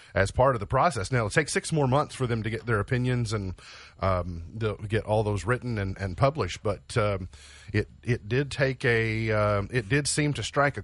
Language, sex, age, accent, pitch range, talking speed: English, male, 40-59, American, 100-130 Hz, 225 wpm